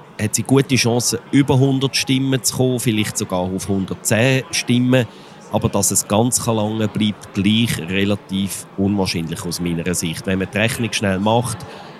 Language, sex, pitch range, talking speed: German, male, 95-120 Hz, 160 wpm